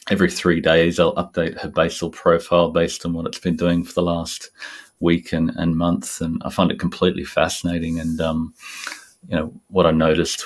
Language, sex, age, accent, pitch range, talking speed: English, male, 30-49, Australian, 80-90 Hz, 195 wpm